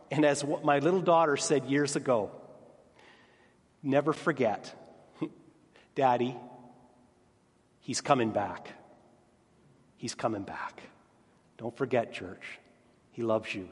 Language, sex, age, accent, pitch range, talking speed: English, male, 40-59, American, 120-155 Hz, 105 wpm